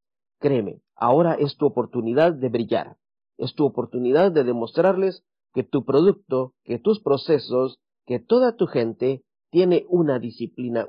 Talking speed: 140 wpm